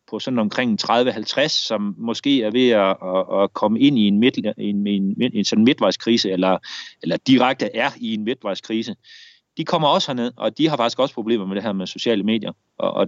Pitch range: 115-180 Hz